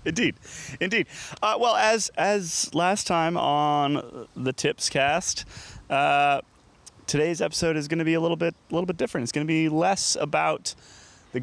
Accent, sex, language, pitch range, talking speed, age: American, male, English, 110-150 Hz, 175 wpm, 30-49